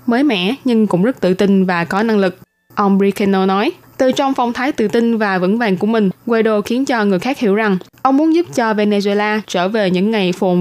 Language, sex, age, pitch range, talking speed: Vietnamese, female, 20-39, 195-245 Hz, 240 wpm